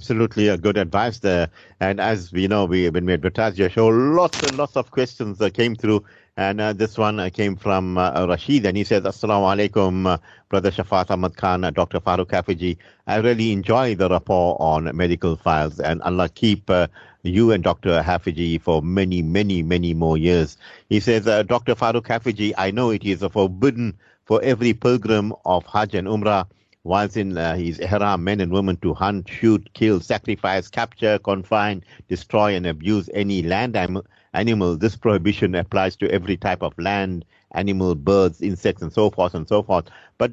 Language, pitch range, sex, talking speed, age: English, 95-120 Hz, male, 195 wpm, 50-69